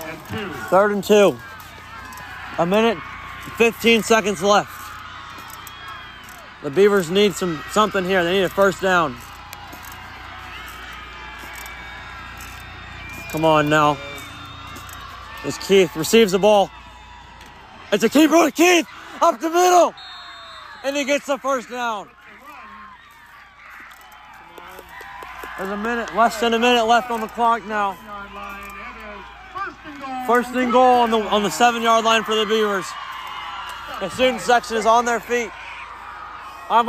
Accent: American